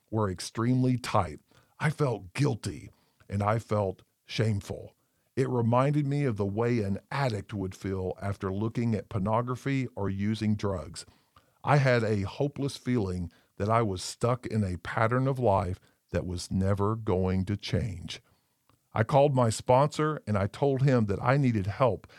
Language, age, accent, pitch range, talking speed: English, 50-69, American, 105-130 Hz, 160 wpm